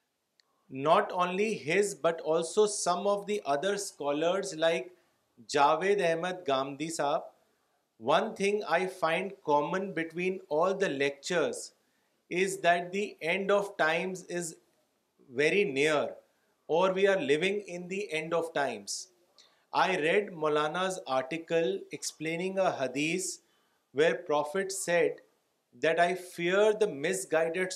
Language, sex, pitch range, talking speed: Urdu, male, 155-195 Hz, 125 wpm